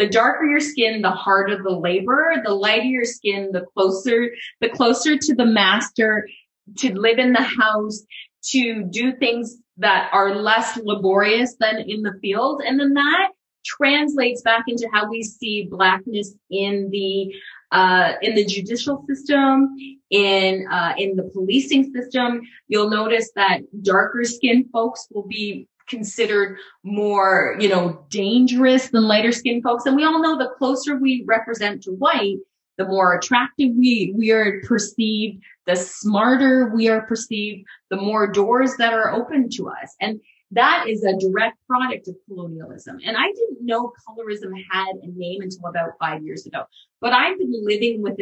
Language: English